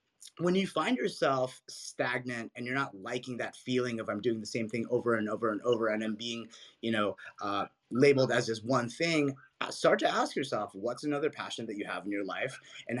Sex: male